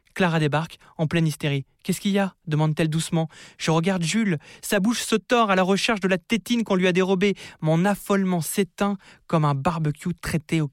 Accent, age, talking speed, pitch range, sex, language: French, 20-39, 215 wpm, 145-180 Hz, male, French